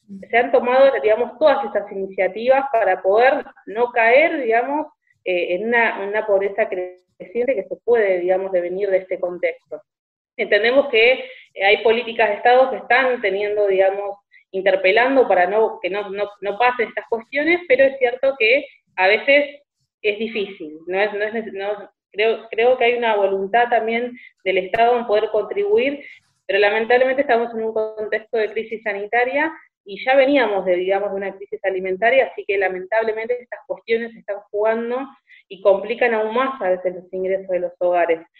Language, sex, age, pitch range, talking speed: Spanish, female, 20-39, 195-255 Hz, 170 wpm